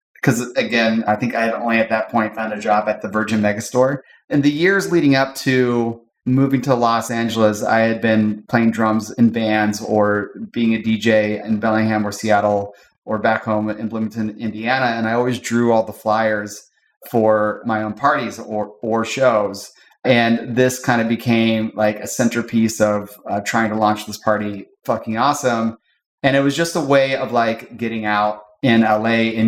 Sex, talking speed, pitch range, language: male, 185 wpm, 105-120 Hz, English